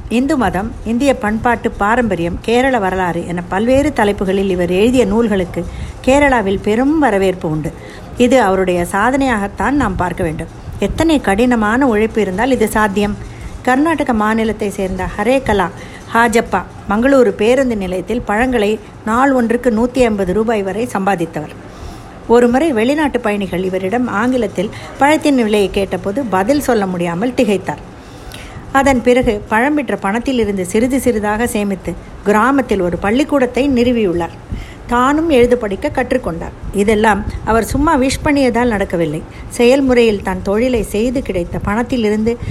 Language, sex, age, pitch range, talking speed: Tamil, female, 50-69, 195-255 Hz, 120 wpm